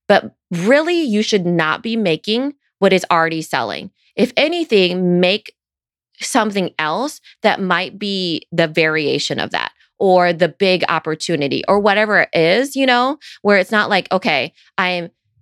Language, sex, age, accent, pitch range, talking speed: English, female, 30-49, American, 165-220 Hz, 150 wpm